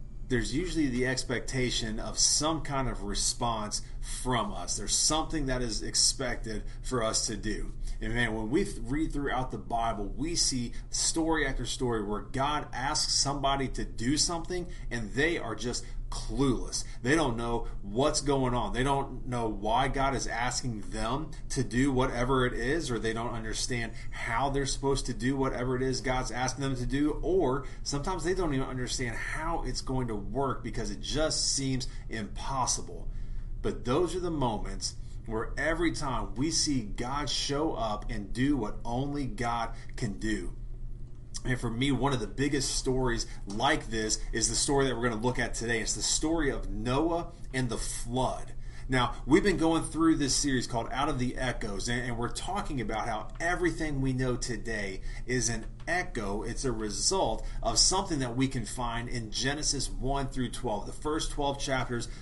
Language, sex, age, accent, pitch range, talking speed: English, male, 30-49, American, 115-135 Hz, 180 wpm